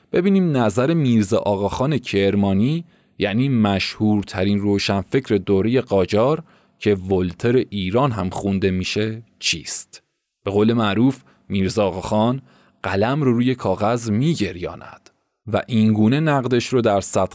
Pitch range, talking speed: 105-130 Hz, 120 wpm